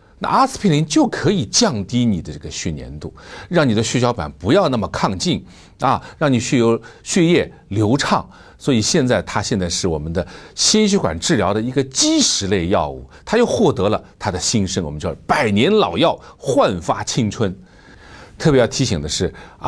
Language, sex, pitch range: Chinese, male, 90-140 Hz